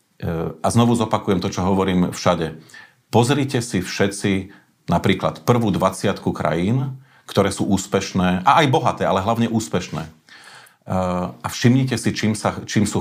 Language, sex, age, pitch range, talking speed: Slovak, male, 40-59, 95-120 Hz, 130 wpm